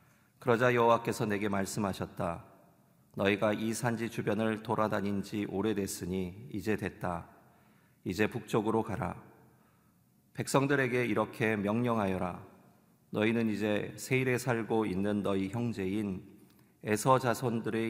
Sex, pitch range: male, 100-115 Hz